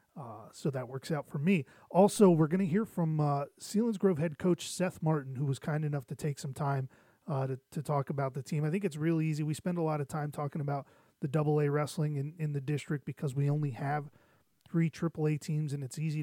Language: English